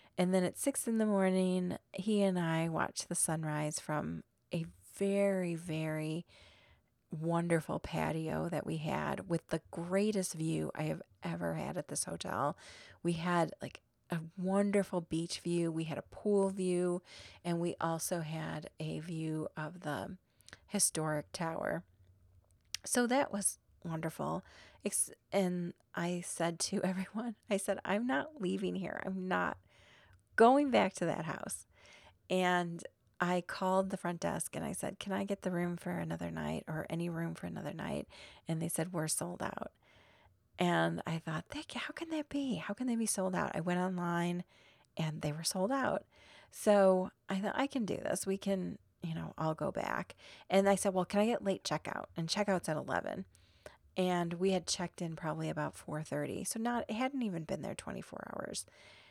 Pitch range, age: 160-195 Hz, 30-49